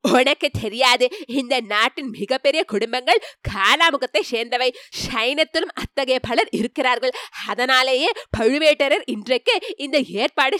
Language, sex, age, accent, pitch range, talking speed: Tamil, female, 20-39, native, 240-355 Hz, 70 wpm